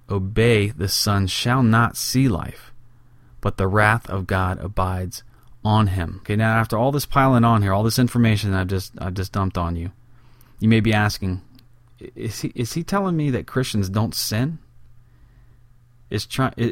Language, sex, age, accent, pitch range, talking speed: English, male, 30-49, American, 100-120 Hz, 175 wpm